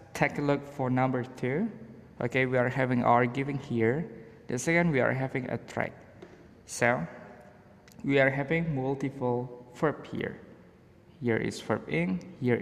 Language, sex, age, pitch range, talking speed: Indonesian, male, 20-39, 115-150 Hz, 150 wpm